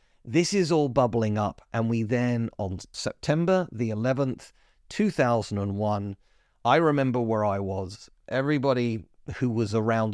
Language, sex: English, male